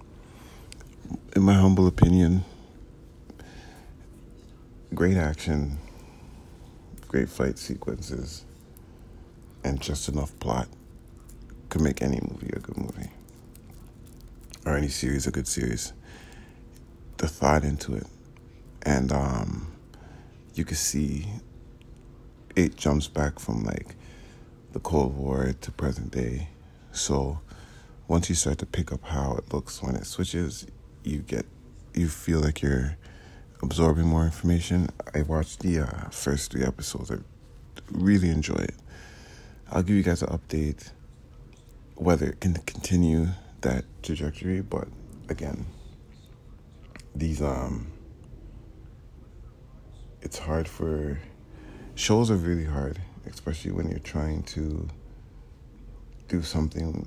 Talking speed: 115 wpm